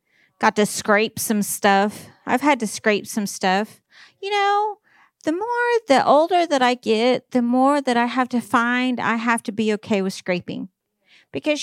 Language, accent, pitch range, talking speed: English, American, 220-280 Hz, 180 wpm